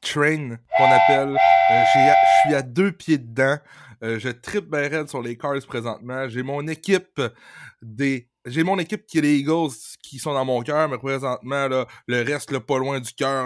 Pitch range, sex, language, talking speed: 130-160 Hz, male, French, 195 wpm